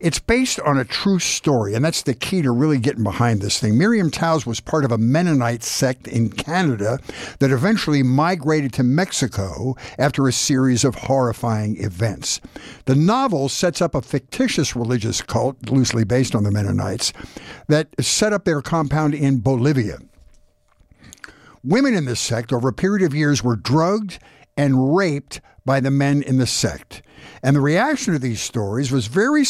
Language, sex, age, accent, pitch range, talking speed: English, male, 60-79, American, 125-160 Hz, 170 wpm